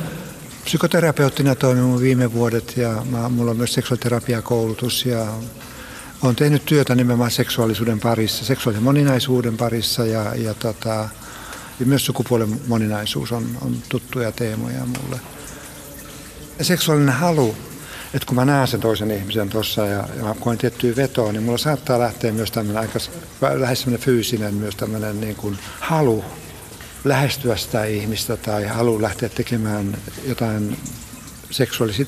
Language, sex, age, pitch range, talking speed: Finnish, male, 60-79, 115-135 Hz, 130 wpm